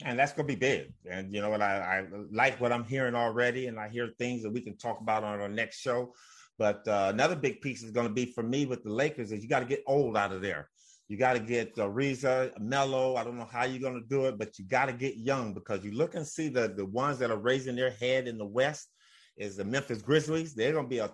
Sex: male